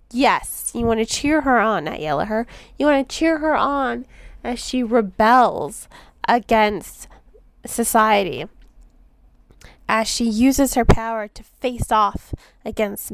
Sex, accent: female, American